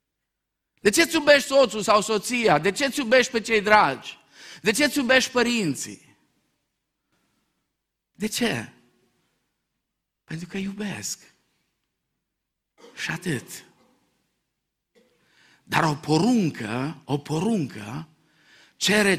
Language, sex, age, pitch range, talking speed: Romanian, male, 50-69, 120-190 Hz, 100 wpm